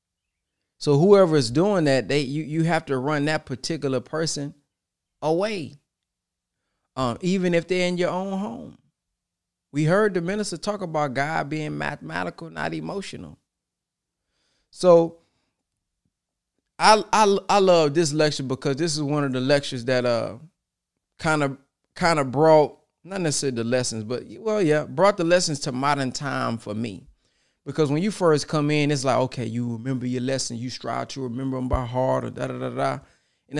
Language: English